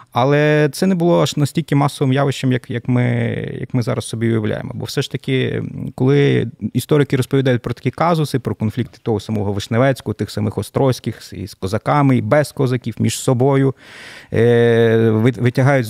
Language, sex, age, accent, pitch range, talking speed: Ukrainian, male, 30-49, native, 120-145 Hz, 160 wpm